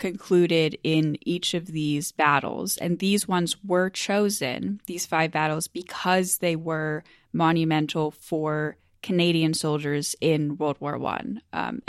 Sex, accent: female, American